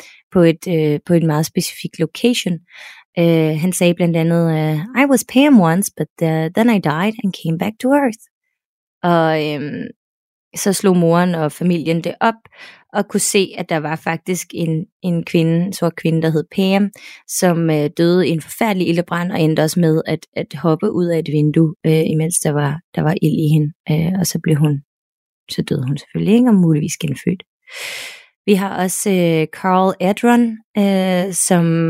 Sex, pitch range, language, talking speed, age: female, 165-200 Hz, Danish, 185 wpm, 20-39